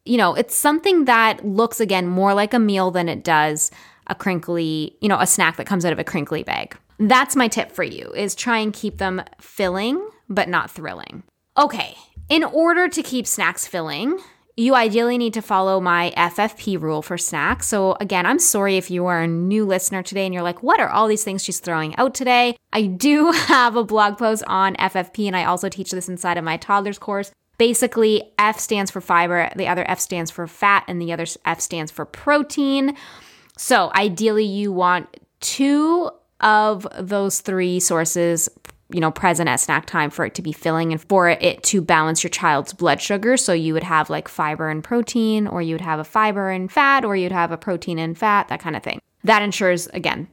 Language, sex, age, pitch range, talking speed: English, female, 10-29, 175-220 Hz, 210 wpm